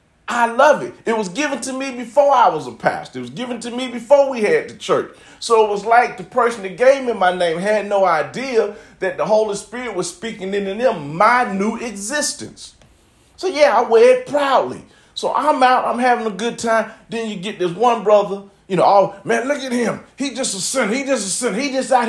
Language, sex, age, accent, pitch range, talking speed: English, male, 40-59, American, 185-250 Hz, 230 wpm